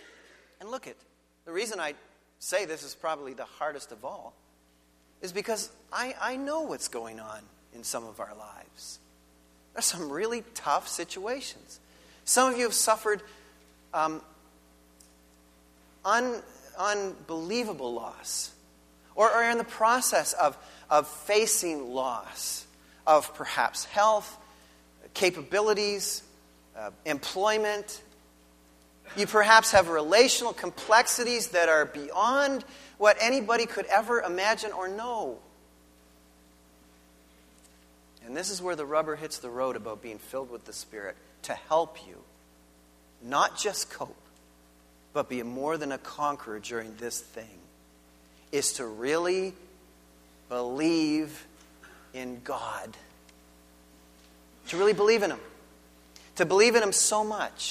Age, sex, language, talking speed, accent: 40-59, male, English, 125 wpm, American